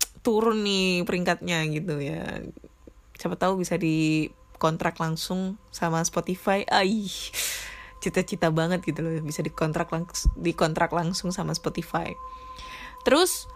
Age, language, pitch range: 10-29, Indonesian, 165-235 Hz